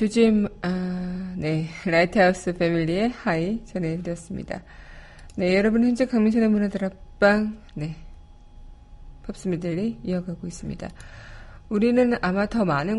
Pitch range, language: 170-215 Hz, Korean